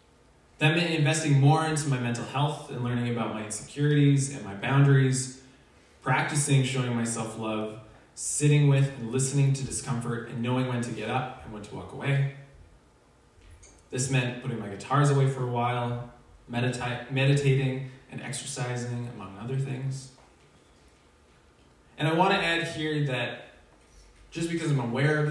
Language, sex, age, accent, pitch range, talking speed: English, male, 20-39, American, 110-140 Hz, 150 wpm